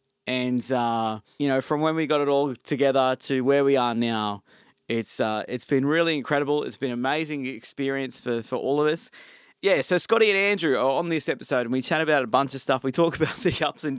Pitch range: 115-150 Hz